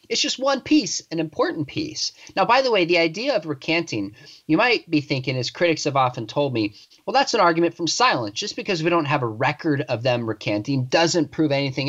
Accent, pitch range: American, 145-190 Hz